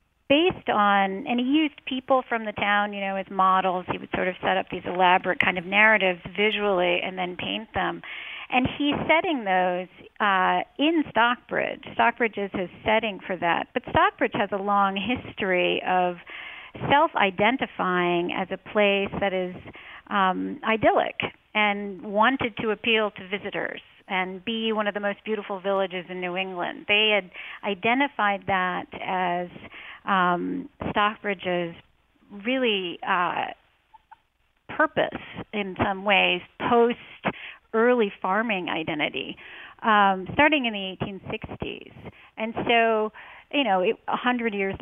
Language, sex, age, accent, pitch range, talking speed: English, female, 50-69, American, 185-220 Hz, 135 wpm